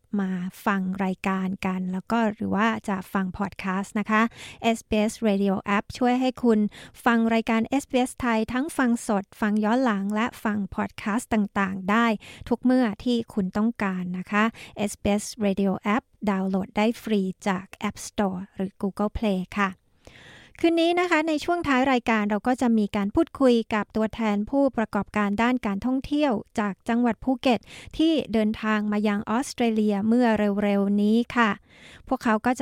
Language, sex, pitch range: Thai, female, 200-235 Hz